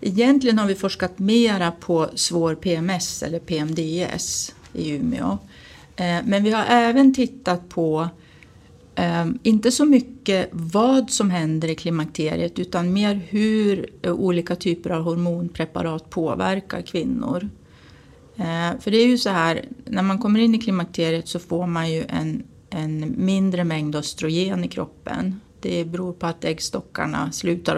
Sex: female